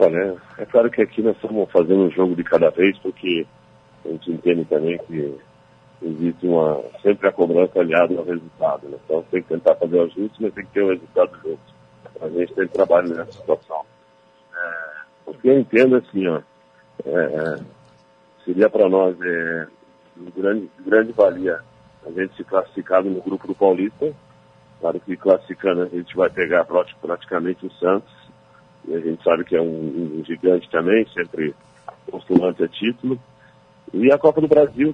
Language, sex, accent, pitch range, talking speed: Portuguese, male, Brazilian, 80-125 Hz, 170 wpm